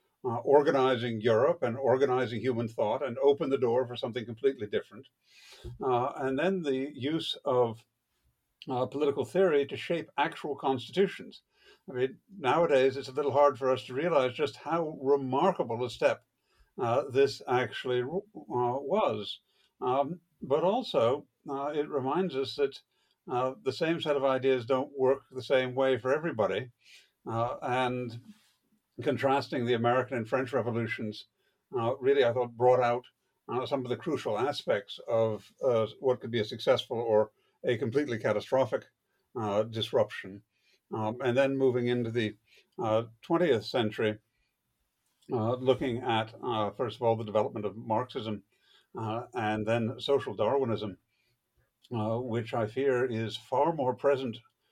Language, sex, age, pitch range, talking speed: English, male, 60-79, 115-135 Hz, 150 wpm